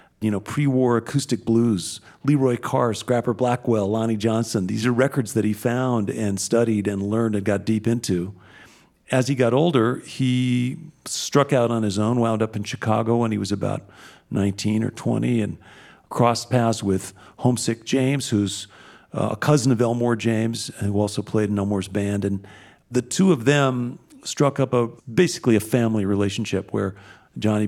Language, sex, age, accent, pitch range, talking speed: English, male, 40-59, American, 105-125 Hz, 170 wpm